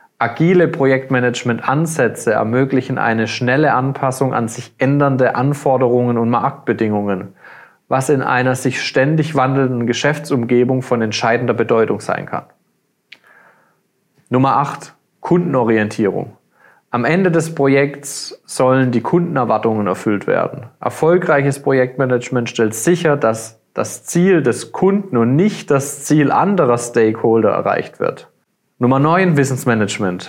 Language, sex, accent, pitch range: German, male, German, 120-155 Hz